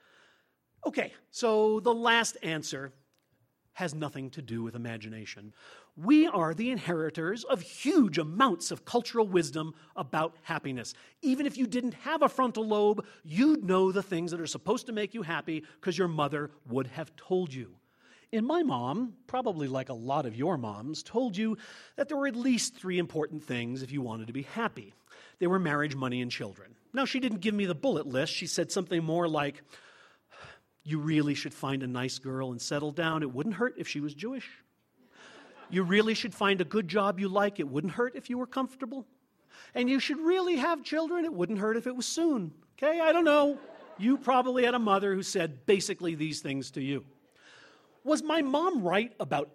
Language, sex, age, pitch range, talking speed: English, male, 40-59, 150-240 Hz, 195 wpm